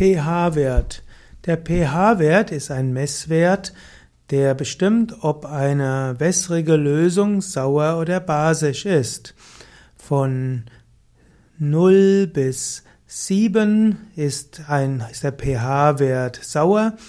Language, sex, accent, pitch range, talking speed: German, male, German, 140-175 Hz, 90 wpm